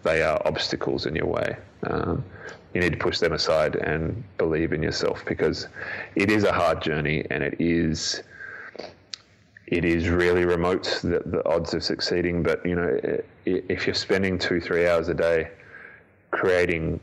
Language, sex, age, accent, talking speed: English, male, 20-39, Australian, 165 wpm